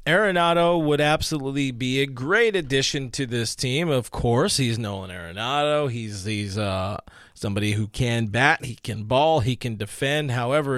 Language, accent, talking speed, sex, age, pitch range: English, American, 160 wpm, male, 30-49, 115-145 Hz